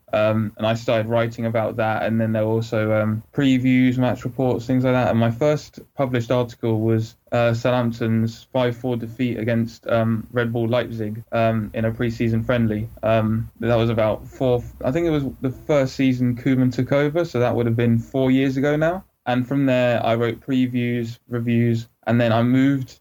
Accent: British